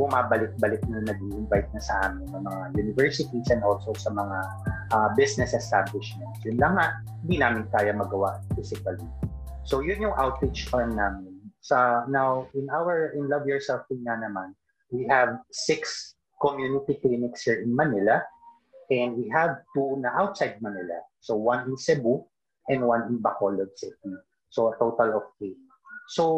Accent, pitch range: native, 110-140 Hz